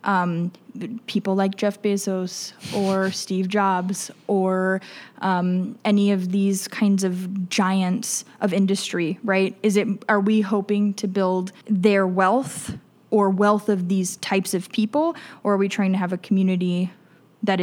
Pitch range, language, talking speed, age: 180-200 Hz, English, 150 wpm, 10-29